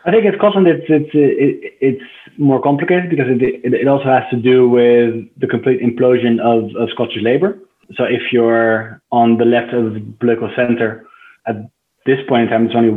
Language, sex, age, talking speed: English, male, 20-39, 185 wpm